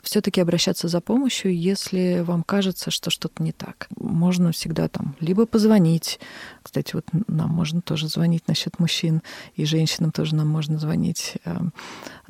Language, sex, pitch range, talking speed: Russian, female, 160-195 Hz, 150 wpm